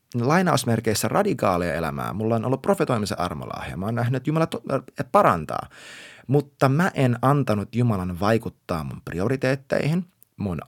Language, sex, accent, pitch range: Finnish, male, native, 110-145 Hz